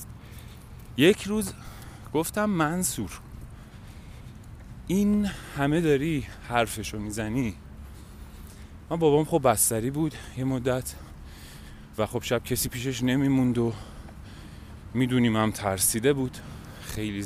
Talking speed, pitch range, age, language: 95 wpm, 100-155 Hz, 30-49, Persian